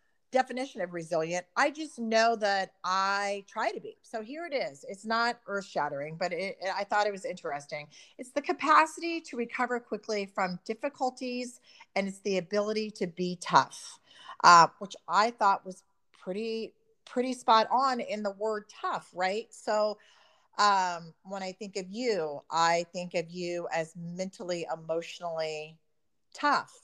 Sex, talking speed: female, 155 wpm